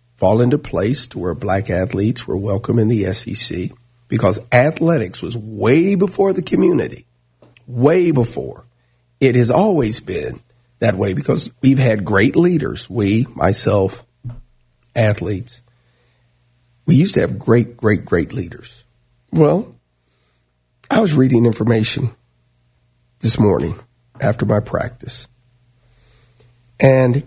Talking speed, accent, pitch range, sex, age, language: 120 wpm, American, 110-125 Hz, male, 50-69, English